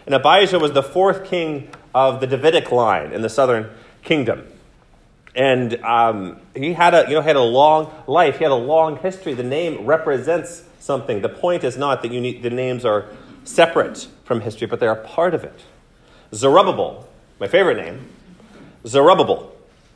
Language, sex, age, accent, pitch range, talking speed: English, male, 30-49, American, 130-165 Hz, 175 wpm